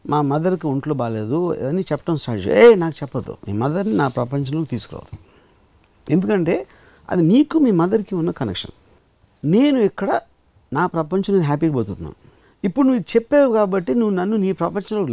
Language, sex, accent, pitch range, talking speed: Telugu, male, native, 130-190 Hz, 150 wpm